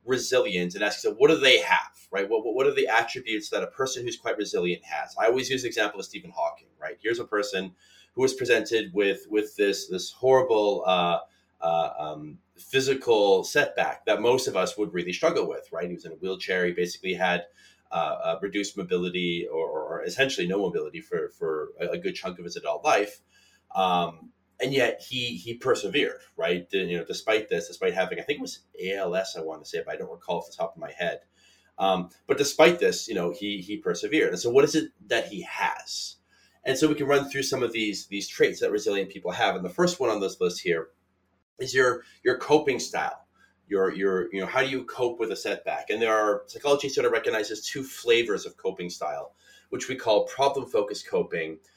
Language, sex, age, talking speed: English, male, 30-49, 220 wpm